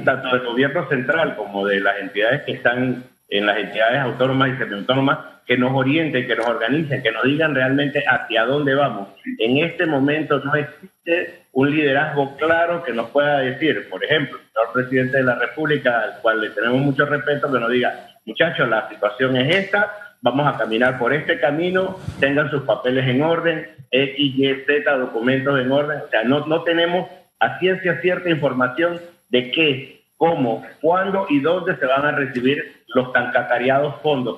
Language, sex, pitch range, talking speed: Spanish, male, 125-155 Hz, 180 wpm